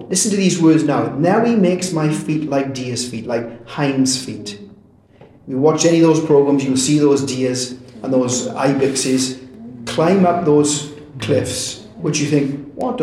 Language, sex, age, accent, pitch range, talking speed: English, male, 30-49, British, 130-180 Hz, 170 wpm